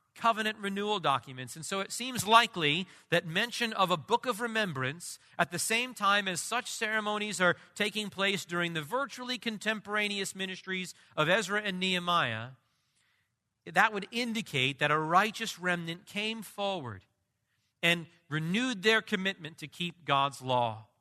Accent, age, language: American, 40-59, English